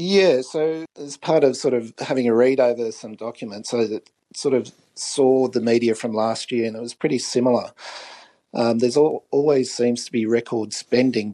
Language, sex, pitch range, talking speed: English, male, 115-135 Hz, 185 wpm